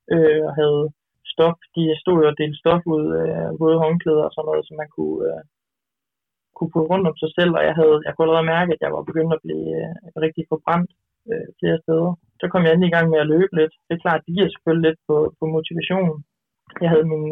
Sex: male